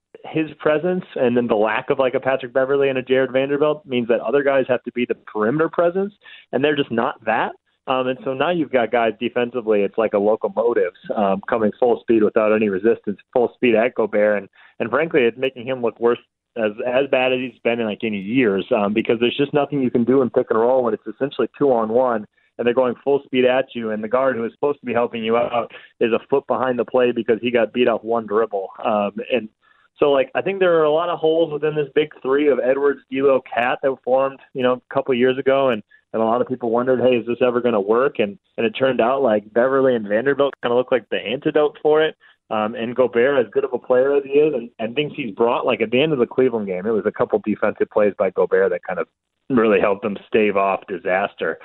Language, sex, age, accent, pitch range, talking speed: English, male, 30-49, American, 115-145 Hz, 255 wpm